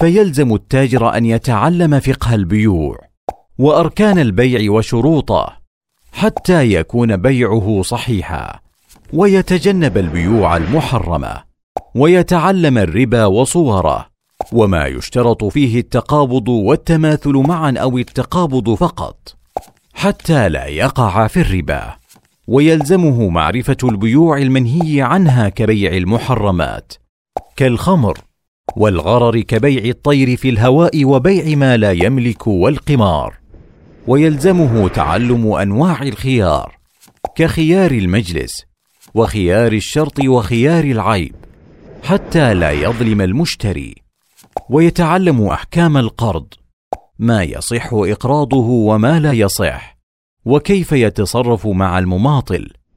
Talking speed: 90 wpm